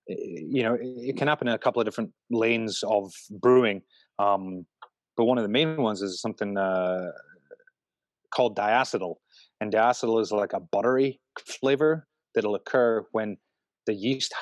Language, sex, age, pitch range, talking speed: English, male, 30-49, 105-125 Hz, 160 wpm